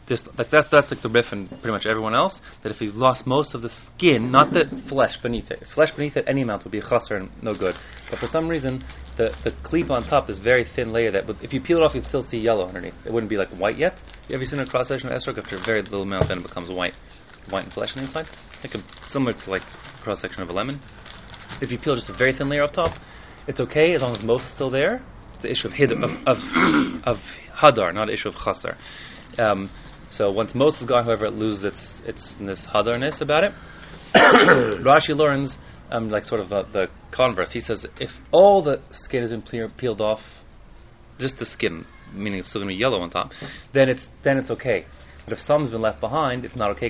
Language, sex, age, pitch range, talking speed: English, male, 20-39, 100-135 Hz, 245 wpm